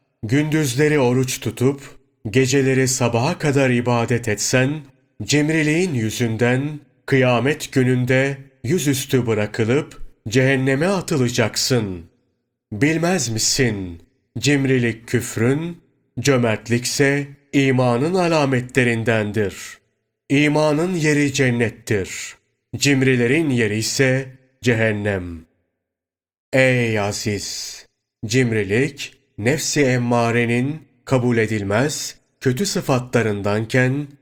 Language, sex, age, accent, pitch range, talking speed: Turkish, male, 40-59, native, 115-140 Hz, 70 wpm